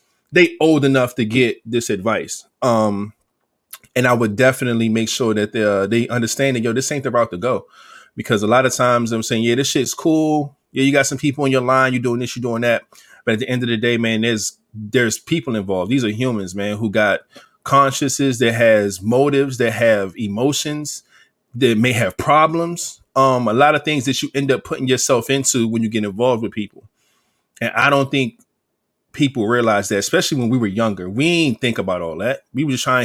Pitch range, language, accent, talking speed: 115-140 Hz, English, American, 220 wpm